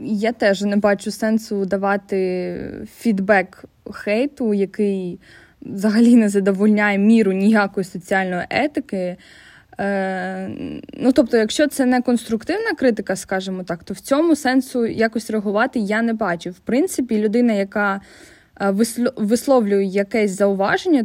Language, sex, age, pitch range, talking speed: Ukrainian, female, 20-39, 200-240 Hz, 115 wpm